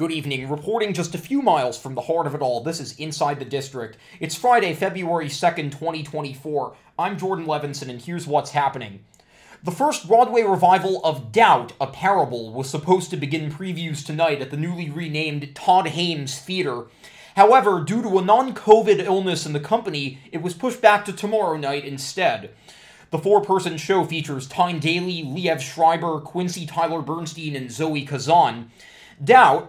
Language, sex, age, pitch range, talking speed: English, male, 20-39, 145-185 Hz, 170 wpm